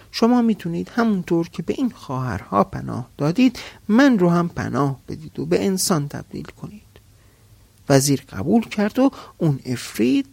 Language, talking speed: Persian, 145 wpm